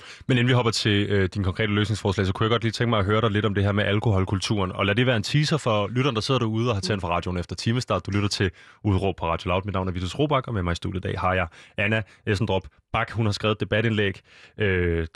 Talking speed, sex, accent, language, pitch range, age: 275 wpm, male, native, Danish, 95-115 Hz, 20-39